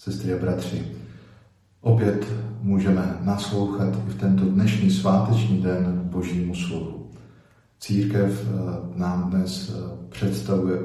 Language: Slovak